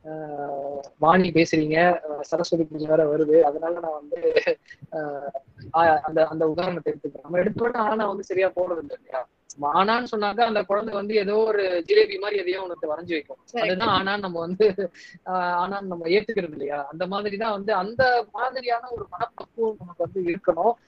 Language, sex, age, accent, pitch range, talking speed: Tamil, female, 20-39, native, 160-215 Hz, 125 wpm